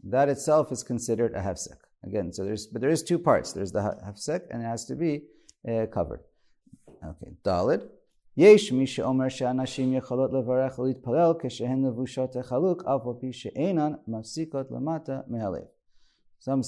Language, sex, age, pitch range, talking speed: English, male, 40-59, 110-140 Hz, 95 wpm